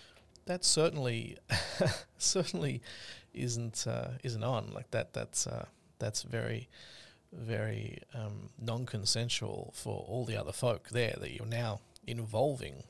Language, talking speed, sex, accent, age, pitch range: English, 120 wpm, male, Australian, 40-59, 110-125 Hz